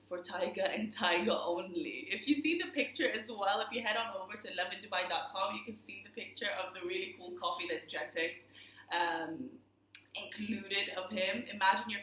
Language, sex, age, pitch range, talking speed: Arabic, female, 20-39, 175-245 Hz, 185 wpm